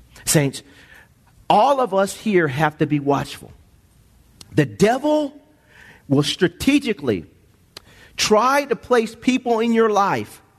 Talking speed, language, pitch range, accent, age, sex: 115 wpm, English, 190-275 Hz, American, 40-59, male